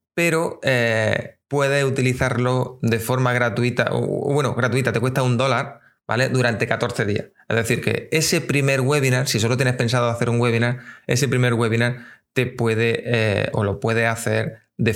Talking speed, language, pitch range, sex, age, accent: 170 wpm, Spanish, 115-135 Hz, male, 20-39, Spanish